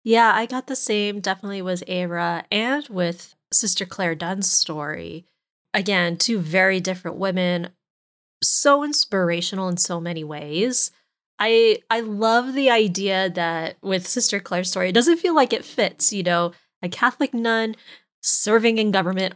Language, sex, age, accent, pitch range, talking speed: English, female, 20-39, American, 180-220 Hz, 150 wpm